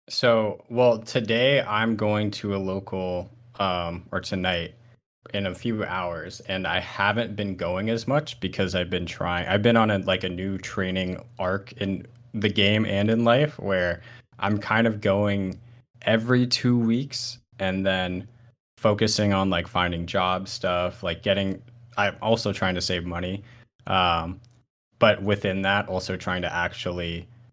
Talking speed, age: 160 wpm, 20-39